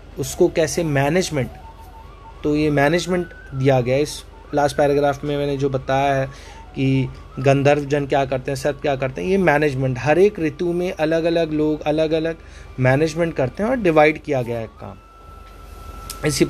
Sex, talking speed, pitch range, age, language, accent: male, 165 wpm, 130-190 Hz, 30-49, Hindi, native